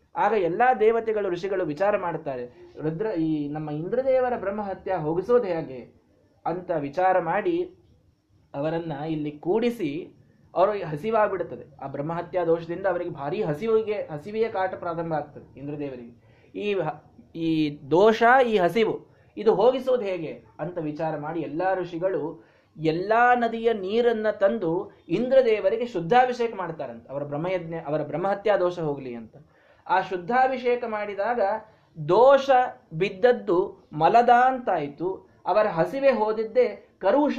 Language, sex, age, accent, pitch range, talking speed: Kannada, male, 20-39, native, 150-220 Hz, 110 wpm